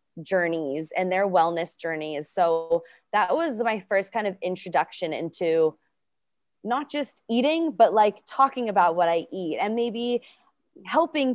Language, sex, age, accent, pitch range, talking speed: English, female, 20-39, American, 180-220 Hz, 145 wpm